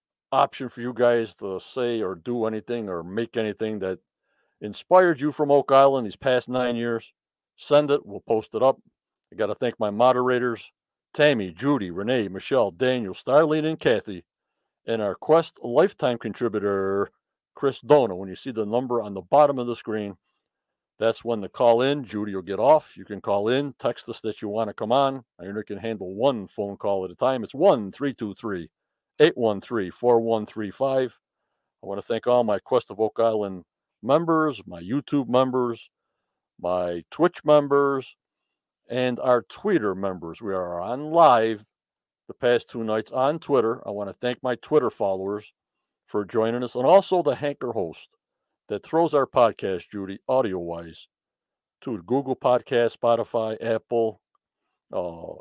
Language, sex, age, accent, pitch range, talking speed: English, male, 50-69, American, 105-130 Hz, 170 wpm